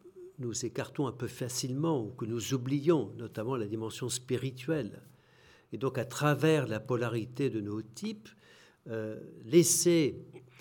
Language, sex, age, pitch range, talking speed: French, male, 60-79, 110-140 Hz, 135 wpm